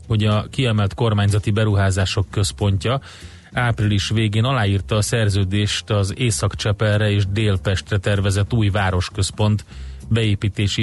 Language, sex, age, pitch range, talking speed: Hungarian, male, 30-49, 100-115 Hz, 105 wpm